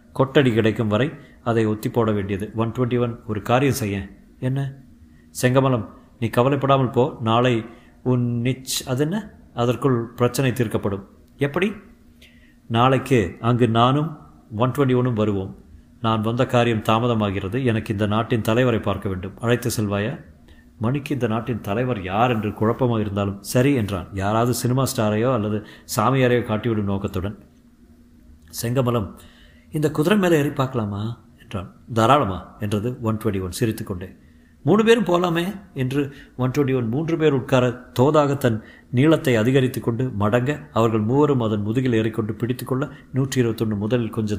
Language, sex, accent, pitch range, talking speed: Tamil, male, native, 105-130 Hz, 125 wpm